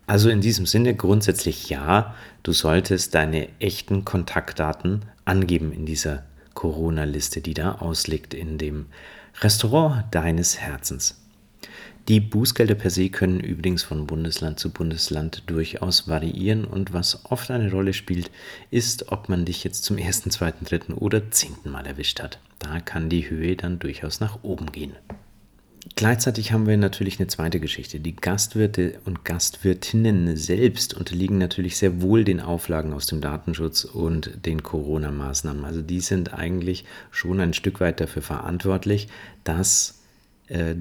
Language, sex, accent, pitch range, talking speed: German, male, German, 80-100 Hz, 145 wpm